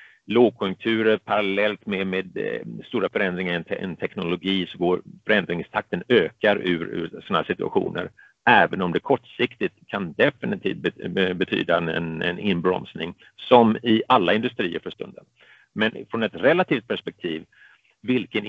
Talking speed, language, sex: 135 wpm, Swedish, male